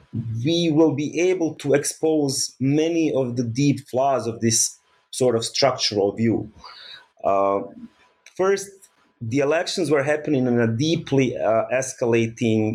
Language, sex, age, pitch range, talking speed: English, male, 30-49, 115-140 Hz, 130 wpm